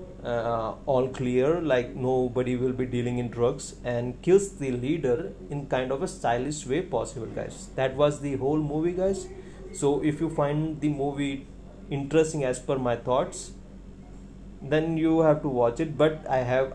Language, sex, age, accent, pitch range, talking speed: Hindi, male, 30-49, native, 125-150 Hz, 170 wpm